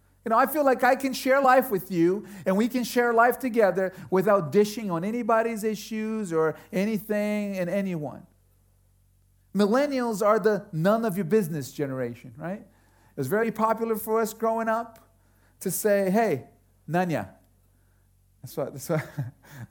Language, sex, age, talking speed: English, male, 40-59, 160 wpm